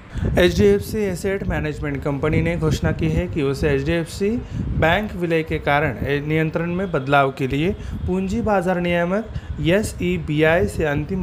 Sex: male